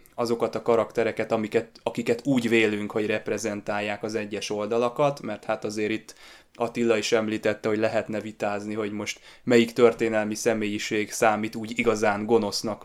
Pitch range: 105-120 Hz